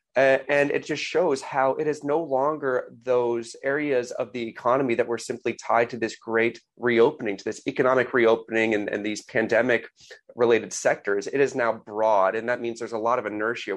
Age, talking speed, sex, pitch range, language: 30-49, 190 wpm, male, 110-130 Hz, English